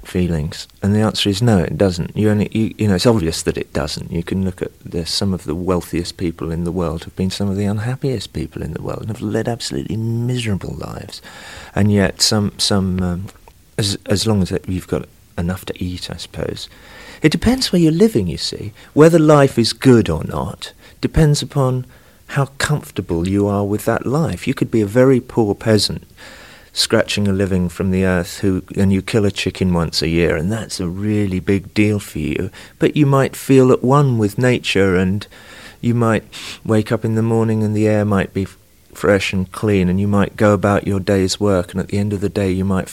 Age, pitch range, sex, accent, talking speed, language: 40-59, 95-115 Hz, male, British, 220 wpm, English